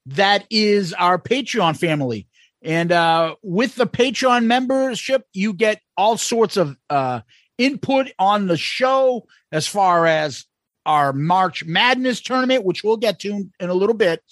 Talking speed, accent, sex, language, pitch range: 150 wpm, American, male, English, 175-245 Hz